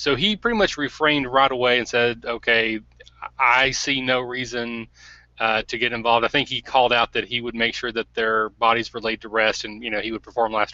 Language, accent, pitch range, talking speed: English, American, 115-150 Hz, 235 wpm